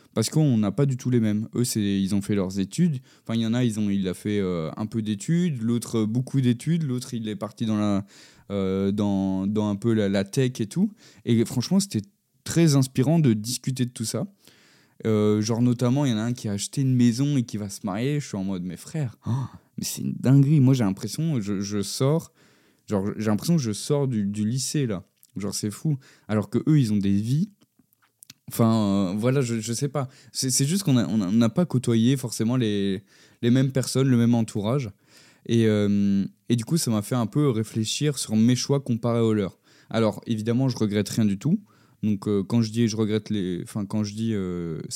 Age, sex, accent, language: 20-39, male, French, French